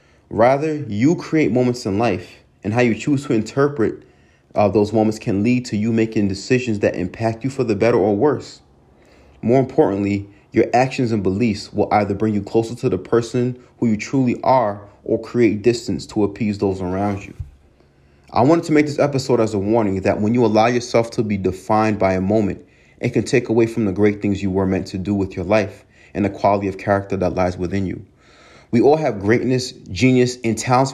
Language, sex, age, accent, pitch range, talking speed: English, male, 30-49, American, 100-125 Hz, 210 wpm